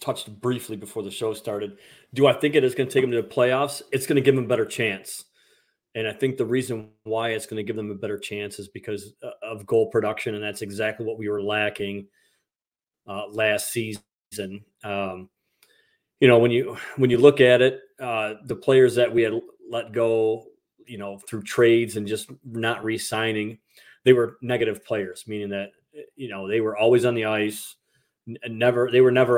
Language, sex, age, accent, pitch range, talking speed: English, male, 30-49, American, 105-125 Hz, 200 wpm